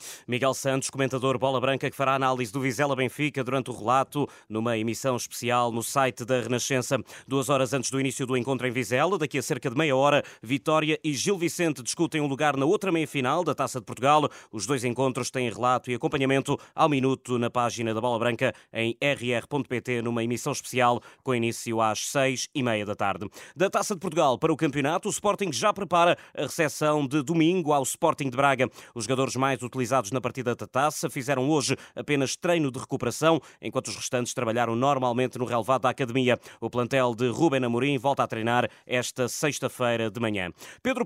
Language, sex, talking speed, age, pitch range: Portuguese, male, 195 wpm, 20-39, 125-150 Hz